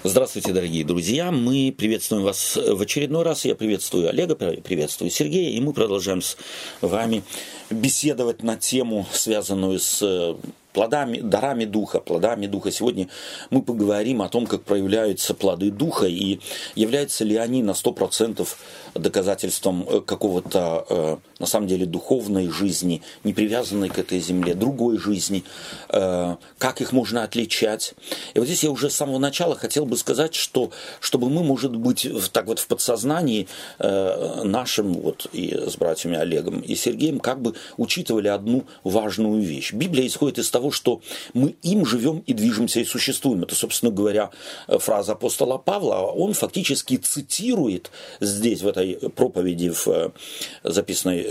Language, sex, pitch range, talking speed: Russian, male, 95-130 Hz, 145 wpm